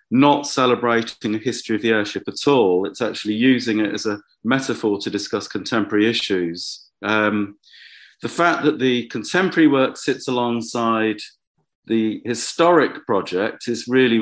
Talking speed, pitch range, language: 145 wpm, 110-130 Hz, English